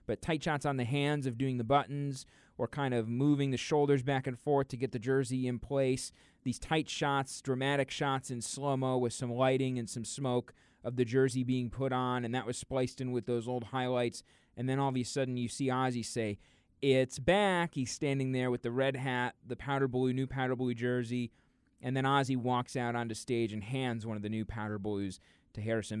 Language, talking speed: English, 220 wpm